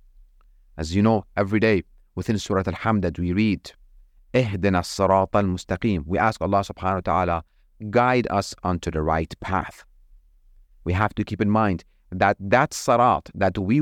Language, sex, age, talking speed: English, male, 30-49, 150 wpm